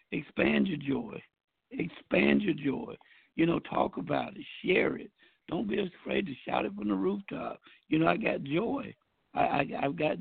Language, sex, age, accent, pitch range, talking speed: English, male, 60-79, American, 140-205 Hz, 180 wpm